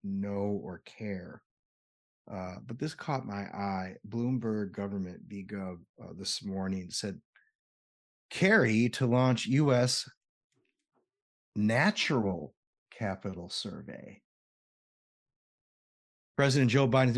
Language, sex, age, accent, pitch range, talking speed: English, male, 30-49, American, 100-125 Hz, 90 wpm